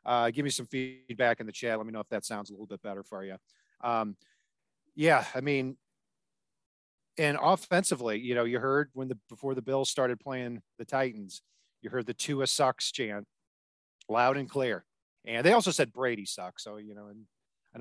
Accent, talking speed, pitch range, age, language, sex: American, 200 wpm, 110-140 Hz, 40-59, English, male